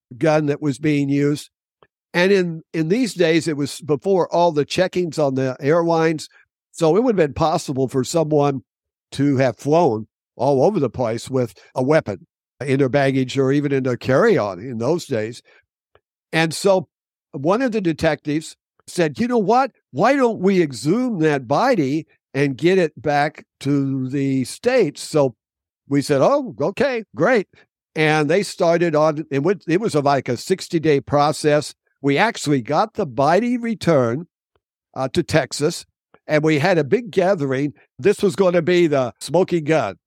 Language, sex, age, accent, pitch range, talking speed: English, male, 60-79, American, 135-170 Hz, 165 wpm